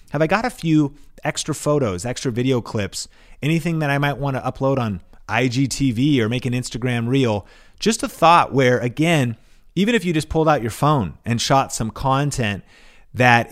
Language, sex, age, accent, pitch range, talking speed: English, male, 30-49, American, 120-160 Hz, 185 wpm